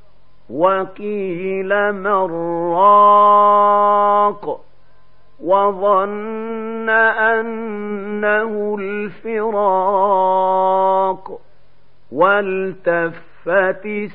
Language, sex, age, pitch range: Arabic, male, 50-69, 165-205 Hz